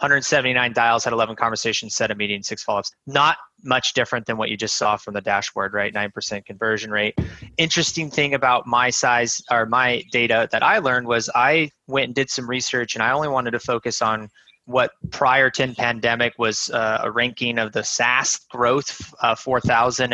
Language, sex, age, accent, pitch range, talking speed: English, male, 20-39, American, 110-130 Hz, 190 wpm